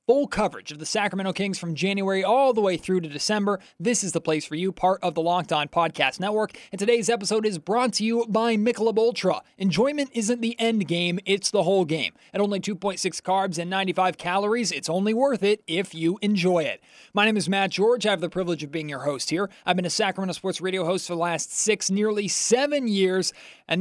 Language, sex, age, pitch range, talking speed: English, male, 20-39, 175-210 Hz, 225 wpm